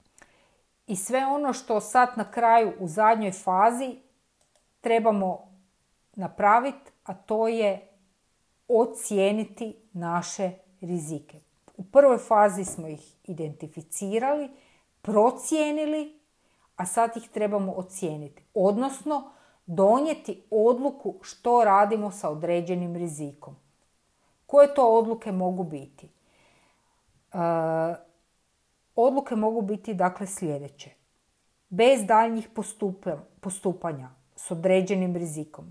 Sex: female